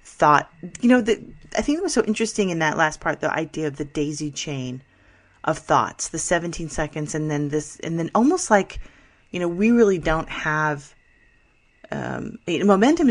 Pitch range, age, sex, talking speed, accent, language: 150-200 Hz, 30-49, female, 180 wpm, American, English